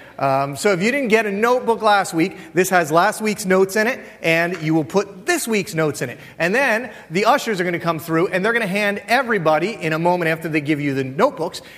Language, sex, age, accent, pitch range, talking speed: English, male, 30-49, American, 160-220 Hz, 255 wpm